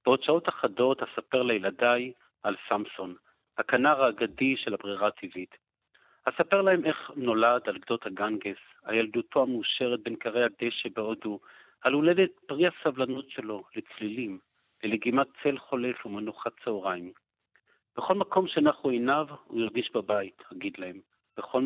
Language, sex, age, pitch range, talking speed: Hebrew, male, 50-69, 110-140 Hz, 125 wpm